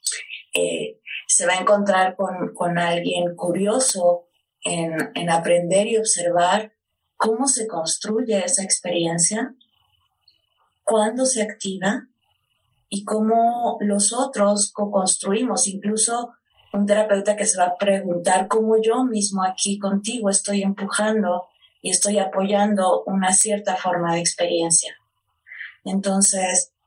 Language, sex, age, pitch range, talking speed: Spanish, female, 20-39, 165-205 Hz, 115 wpm